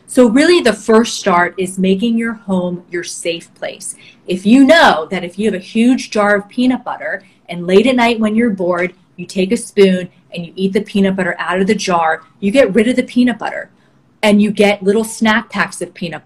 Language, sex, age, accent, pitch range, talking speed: English, female, 30-49, American, 180-225 Hz, 225 wpm